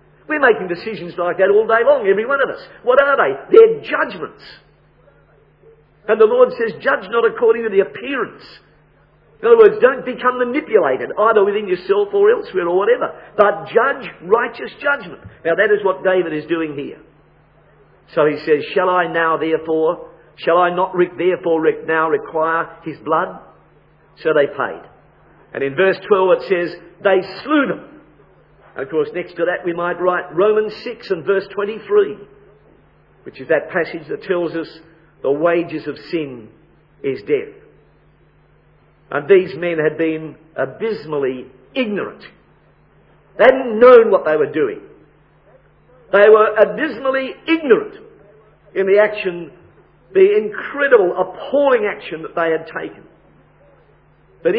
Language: English